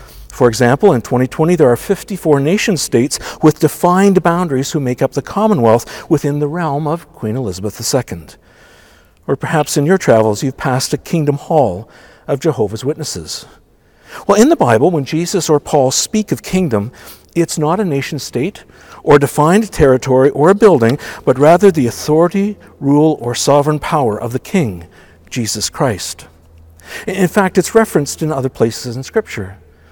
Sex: male